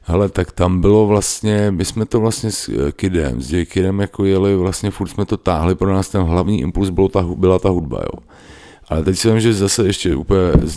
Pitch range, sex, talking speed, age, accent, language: 75-95 Hz, male, 215 wpm, 50-69, native, Czech